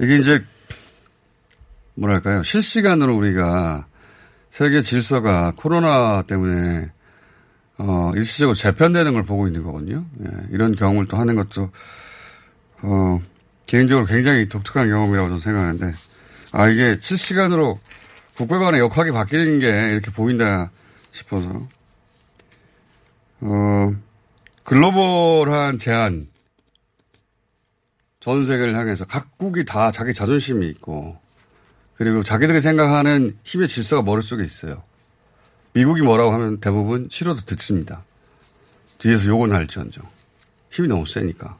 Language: Korean